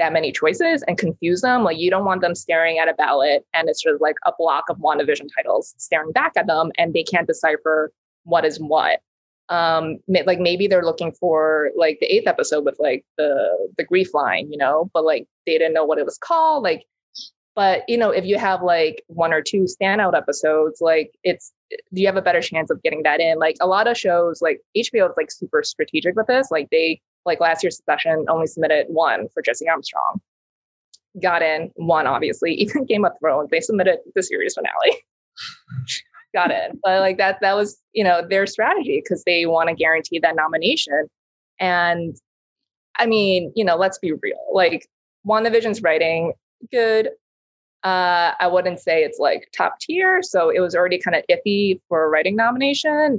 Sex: female